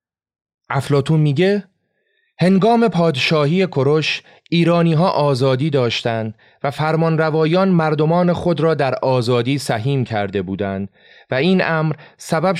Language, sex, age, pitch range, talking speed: Persian, male, 30-49, 110-165 Hz, 105 wpm